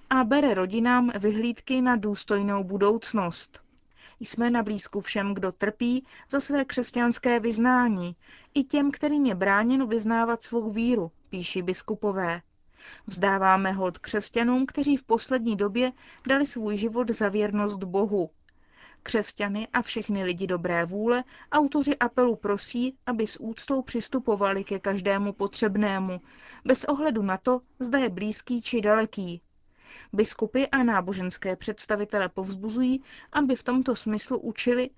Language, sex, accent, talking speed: Czech, female, native, 130 wpm